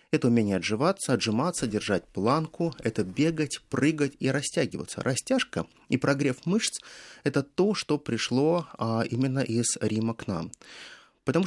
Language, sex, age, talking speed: Russian, male, 30-49, 130 wpm